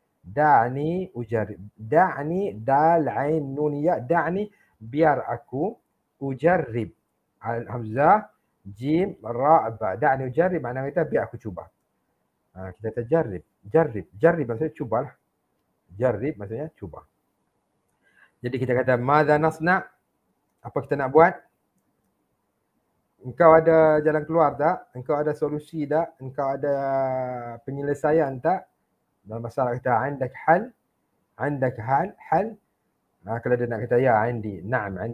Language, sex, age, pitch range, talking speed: English, male, 50-69, 115-155 Hz, 120 wpm